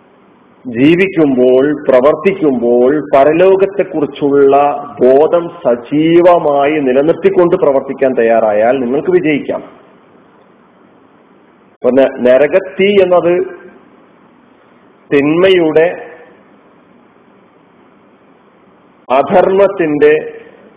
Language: Malayalam